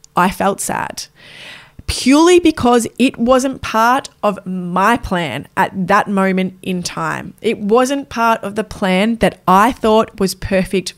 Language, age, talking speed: English, 20-39, 150 wpm